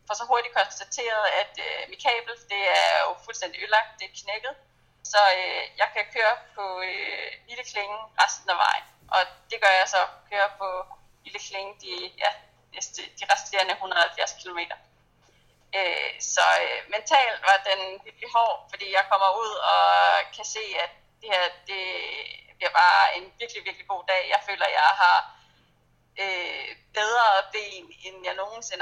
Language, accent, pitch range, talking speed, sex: Danish, native, 185-215 Hz, 170 wpm, female